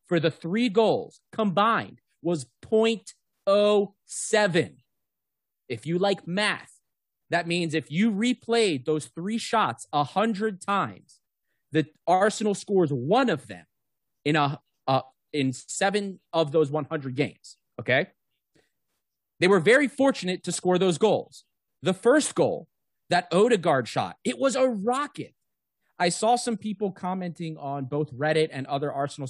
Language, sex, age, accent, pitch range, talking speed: English, male, 30-49, American, 140-200 Hz, 135 wpm